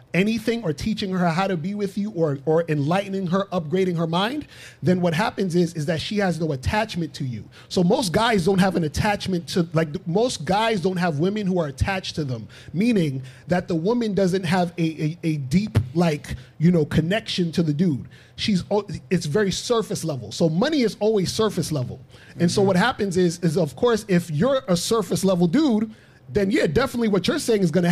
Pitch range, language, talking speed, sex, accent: 160-205 Hz, English, 210 wpm, male, American